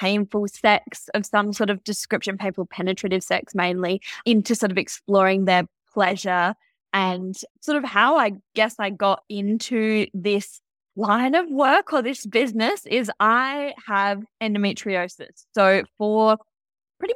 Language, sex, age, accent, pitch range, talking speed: English, female, 10-29, Australian, 185-220 Hz, 140 wpm